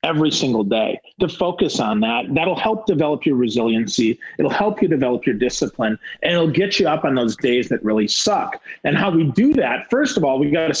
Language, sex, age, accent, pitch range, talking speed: English, male, 40-59, American, 145-195 Hz, 220 wpm